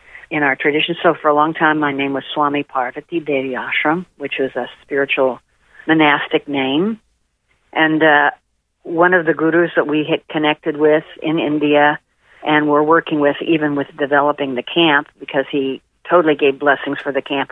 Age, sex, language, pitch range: 50-69, female, English, 145-165 Hz